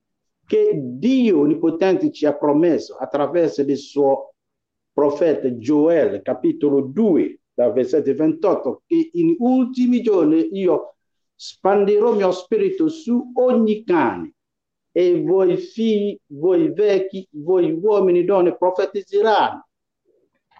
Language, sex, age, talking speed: Italian, male, 50-69, 110 wpm